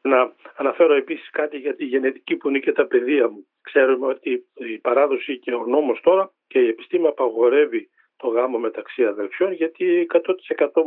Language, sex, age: Greek, male, 50-69